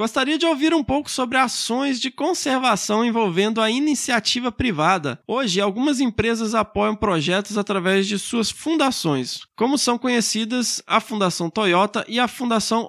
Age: 20-39